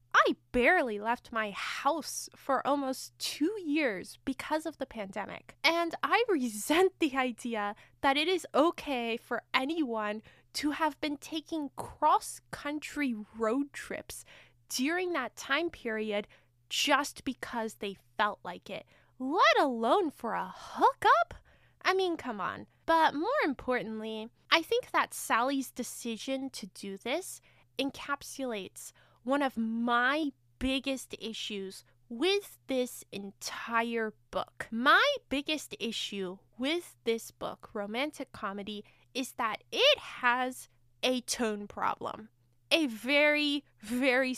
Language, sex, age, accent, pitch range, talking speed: English, female, 10-29, American, 220-295 Hz, 120 wpm